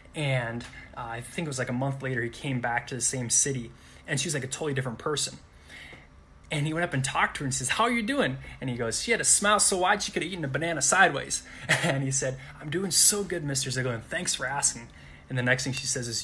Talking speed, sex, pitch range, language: 275 wpm, male, 125-155 Hz, English